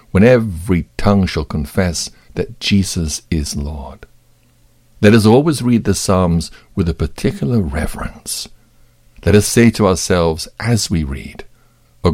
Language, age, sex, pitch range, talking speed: English, 60-79, male, 80-110 Hz, 140 wpm